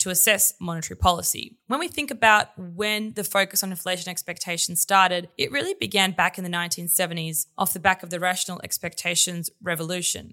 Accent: Australian